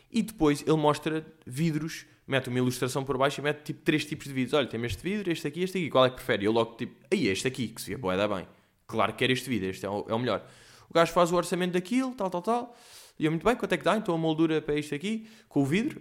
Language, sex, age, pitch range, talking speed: Portuguese, male, 20-39, 115-170 Hz, 285 wpm